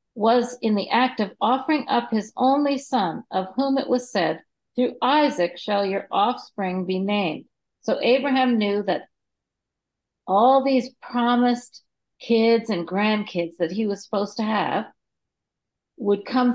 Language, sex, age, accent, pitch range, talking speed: English, female, 50-69, American, 190-250 Hz, 145 wpm